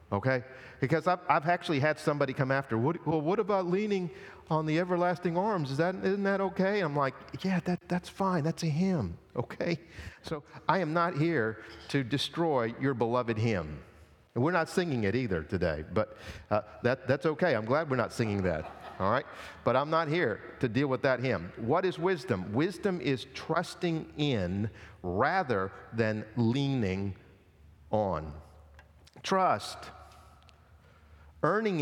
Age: 50-69